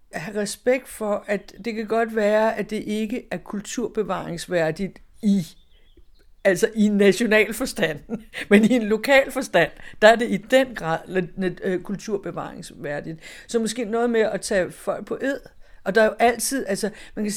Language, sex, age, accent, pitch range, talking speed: Danish, female, 60-79, native, 180-220 Hz, 160 wpm